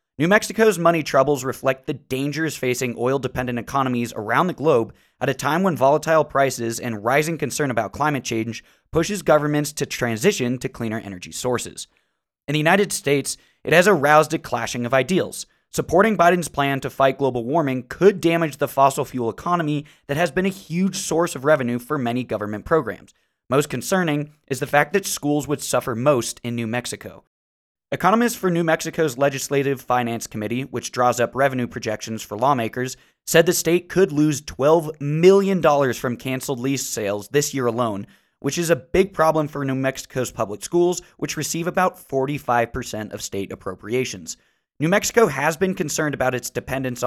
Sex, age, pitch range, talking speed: male, 20-39, 120-160 Hz, 170 wpm